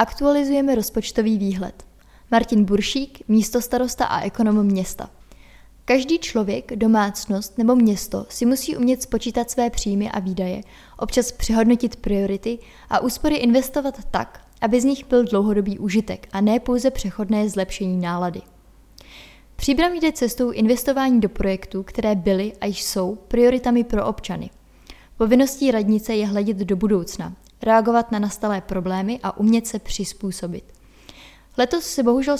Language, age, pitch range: Czech, 20-39, 200-245 Hz